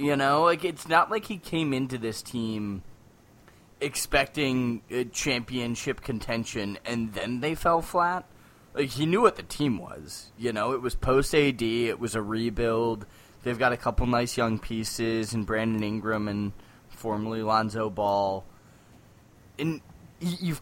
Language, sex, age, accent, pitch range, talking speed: English, male, 10-29, American, 115-170 Hz, 150 wpm